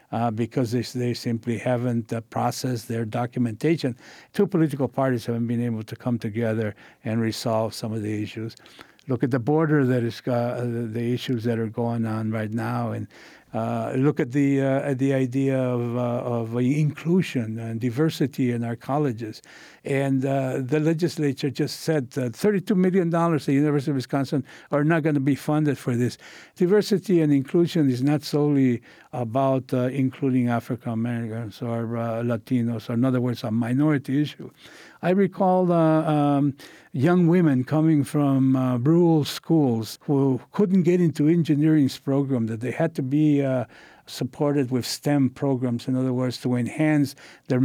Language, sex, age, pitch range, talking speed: English, male, 60-79, 120-145 Hz, 170 wpm